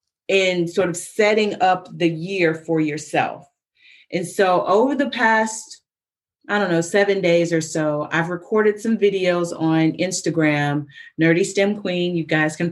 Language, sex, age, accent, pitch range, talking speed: English, female, 30-49, American, 160-195 Hz, 155 wpm